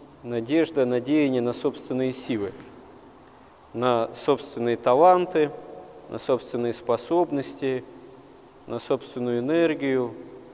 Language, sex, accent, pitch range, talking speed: Russian, male, native, 125-150 Hz, 80 wpm